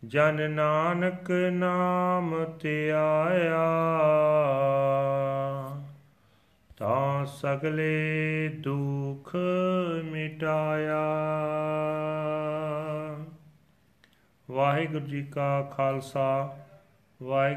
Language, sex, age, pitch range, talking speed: Punjabi, male, 40-59, 130-155 Hz, 45 wpm